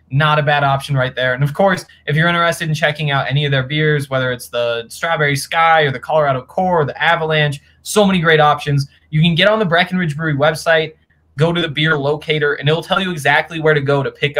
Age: 20-39